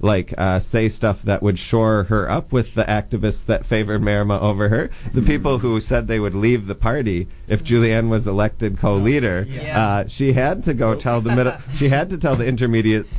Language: English